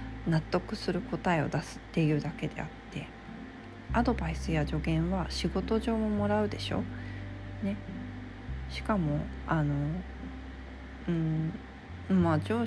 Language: Japanese